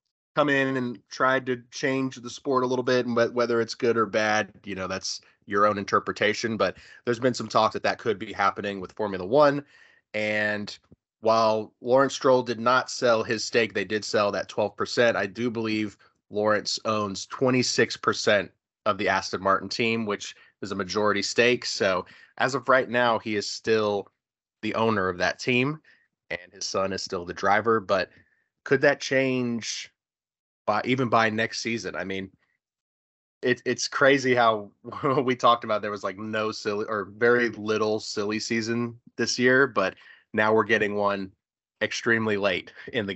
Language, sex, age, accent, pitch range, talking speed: English, male, 30-49, American, 100-125 Hz, 170 wpm